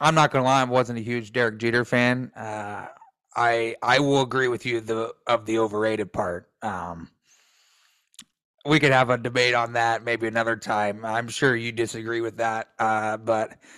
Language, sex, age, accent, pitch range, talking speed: English, male, 30-49, American, 115-130 Hz, 185 wpm